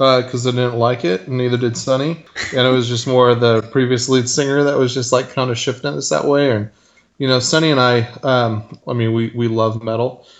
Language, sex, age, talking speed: English, male, 20-39, 250 wpm